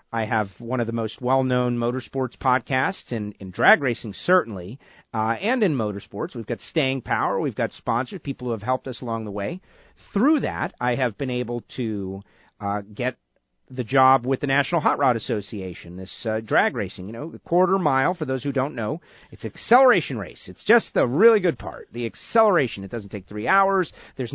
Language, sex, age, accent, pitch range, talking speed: English, male, 40-59, American, 105-150 Hz, 200 wpm